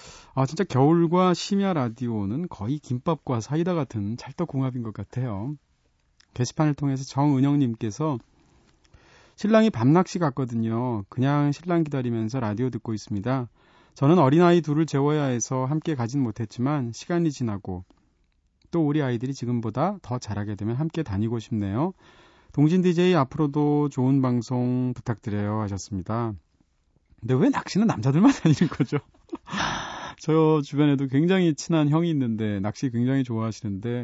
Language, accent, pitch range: Korean, native, 115-160 Hz